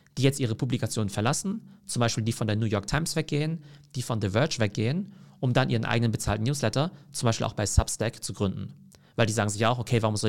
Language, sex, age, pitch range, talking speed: German, male, 40-59, 110-140 Hz, 240 wpm